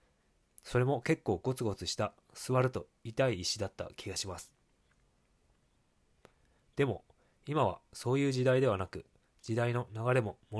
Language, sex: Japanese, male